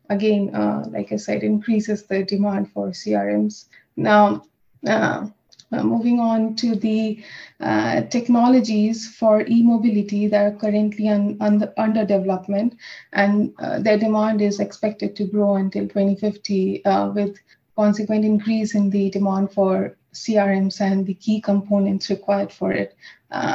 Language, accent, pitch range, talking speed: English, Indian, 200-225 Hz, 135 wpm